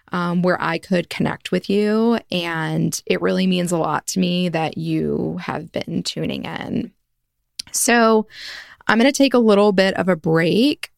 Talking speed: 175 wpm